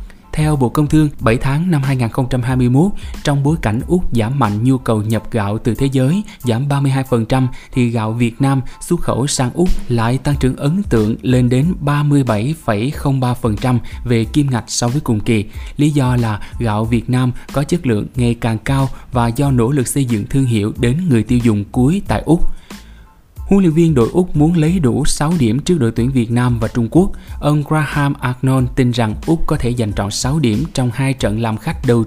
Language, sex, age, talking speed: Vietnamese, male, 20-39, 205 wpm